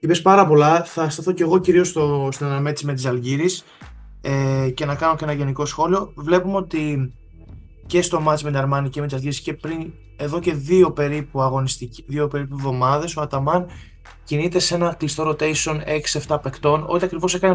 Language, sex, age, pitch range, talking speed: Greek, male, 20-39, 130-170 Hz, 190 wpm